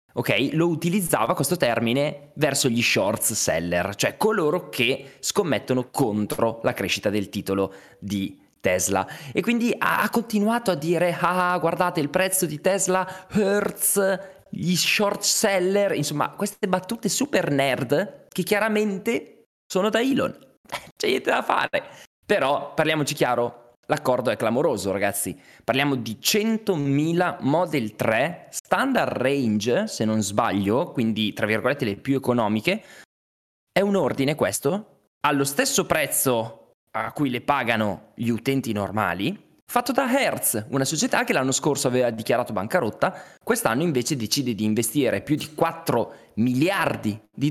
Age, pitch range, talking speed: 20-39, 115-185 Hz, 135 wpm